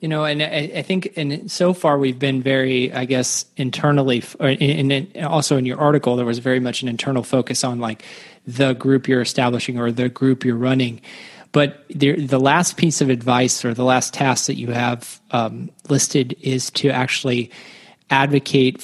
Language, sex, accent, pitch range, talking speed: English, male, American, 125-140 Hz, 180 wpm